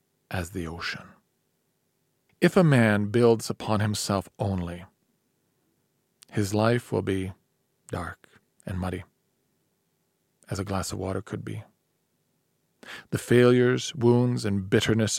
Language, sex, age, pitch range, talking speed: Hungarian, male, 40-59, 95-120 Hz, 115 wpm